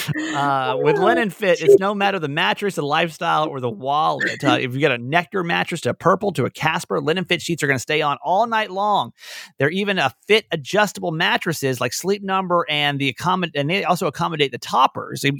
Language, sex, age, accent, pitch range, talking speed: English, male, 30-49, American, 135-185 Hz, 225 wpm